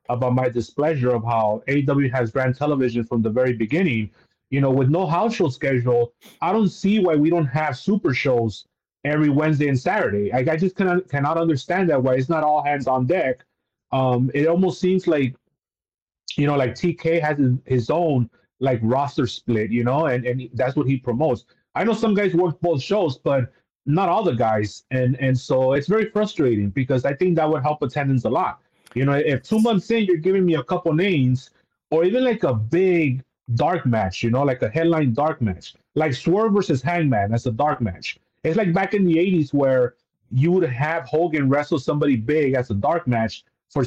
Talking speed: 205 wpm